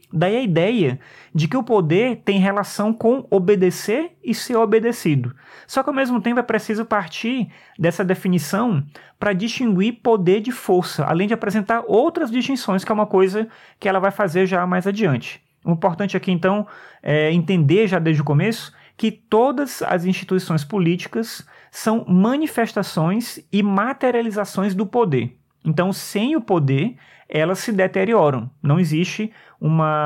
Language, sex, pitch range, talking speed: Portuguese, male, 170-220 Hz, 150 wpm